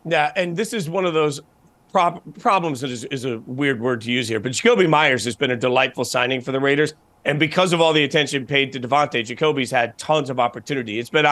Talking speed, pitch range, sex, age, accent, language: 230 wpm, 135-165 Hz, male, 40-59, American, English